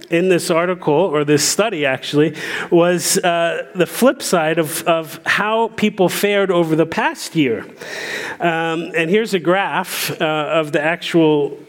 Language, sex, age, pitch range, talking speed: English, male, 40-59, 160-200 Hz, 155 wpm